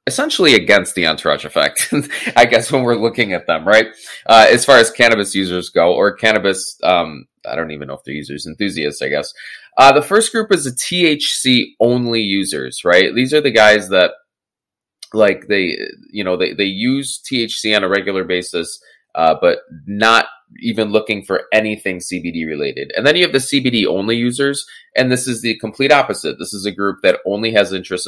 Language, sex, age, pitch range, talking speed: English, male, 20-39, 95-130 Hz, 190 wpm